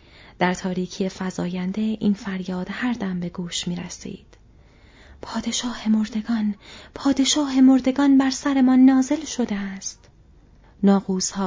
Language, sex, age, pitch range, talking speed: Persian, female, 30-49, 185-230 Hz, 110 wpm